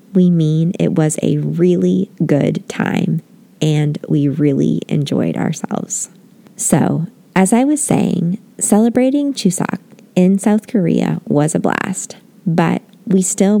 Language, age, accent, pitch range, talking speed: English, 20-39, American, 170-210 Hz, 130 wpm